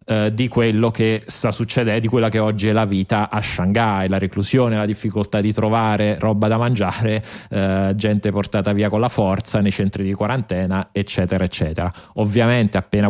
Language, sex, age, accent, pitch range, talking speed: Italian, male, 30-49, native, 105-125 Hz, 175 wpm